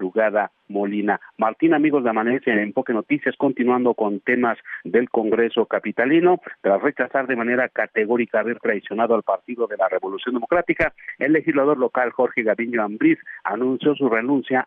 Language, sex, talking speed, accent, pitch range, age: Spanish, male, 150 wpm, Mexican, 120-170 Hz, 50-69